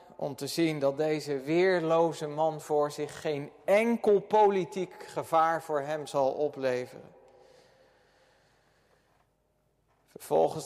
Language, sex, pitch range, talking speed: Dutch, male, 140-170 Hz, 100 wpm